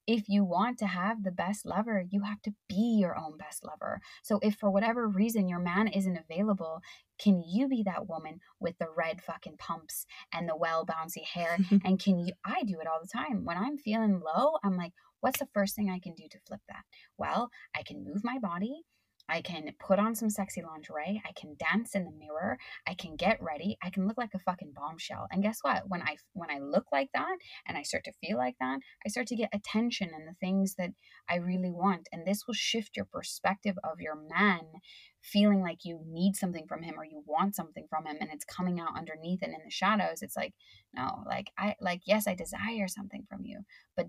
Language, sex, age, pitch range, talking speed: English, female, 20-39, 170-220 Hz, 230 wpm